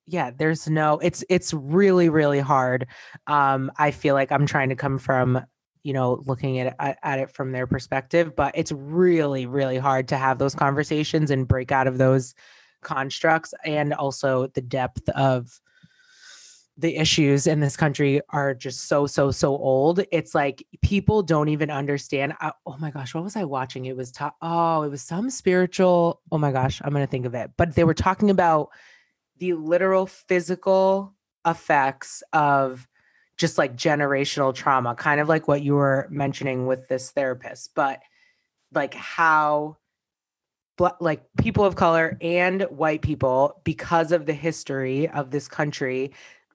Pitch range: 135-170 Hz